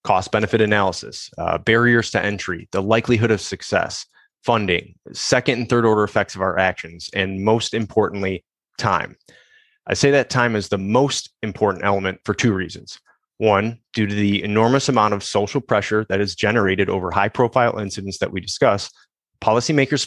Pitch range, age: 95-120 Hz, 20-39